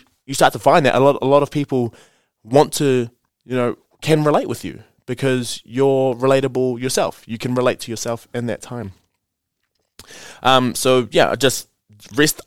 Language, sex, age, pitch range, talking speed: English, male, 20-39, 110-135 Hz, 175 wpm